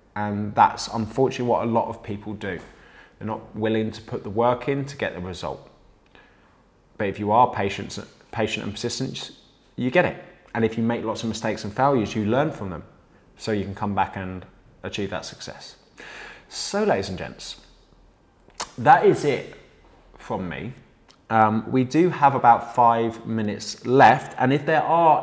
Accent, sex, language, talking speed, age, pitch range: British, male, English, 175 wpm, 20-39, 100-125 Hz